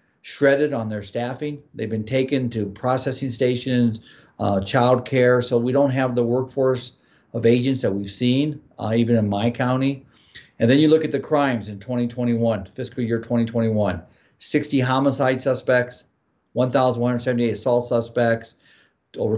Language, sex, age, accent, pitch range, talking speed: English, male, 50-69, American, 110-135 Hz, 145 wpm